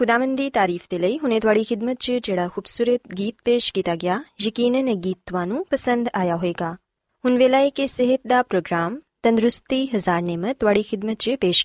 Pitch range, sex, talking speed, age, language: 190-270 Hz, female, 180 wpm, 20-39, Punjabi